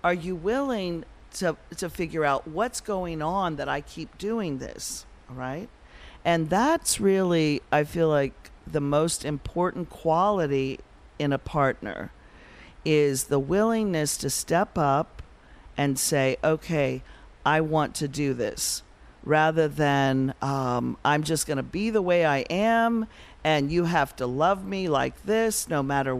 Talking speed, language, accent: 150 wpm, English, American